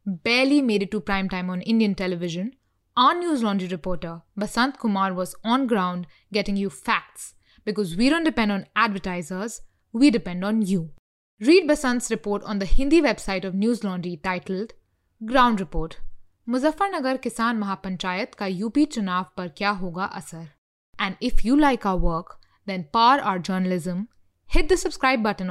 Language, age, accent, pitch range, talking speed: English, 20-39, Indian, 185-235 Hz, 160 wpm